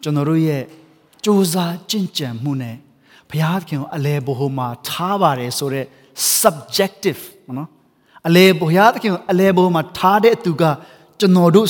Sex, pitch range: male, 145-210 Hz